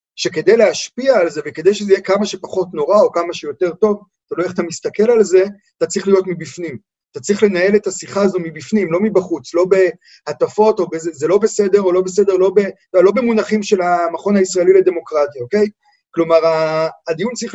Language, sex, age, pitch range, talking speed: Hebrew, male, 30-49, 170-215 Hz, 195 wpm